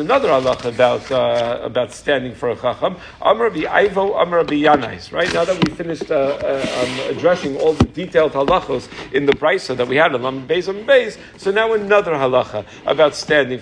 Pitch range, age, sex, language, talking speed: 140-185 Hz, 50-69, male, English, 170 wpm